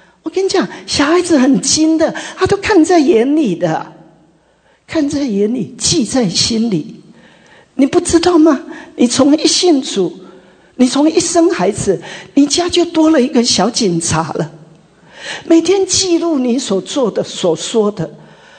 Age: 50-69